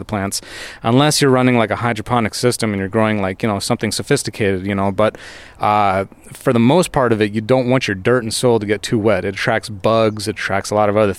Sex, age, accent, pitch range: male, 20-39, American, 110-135 Hz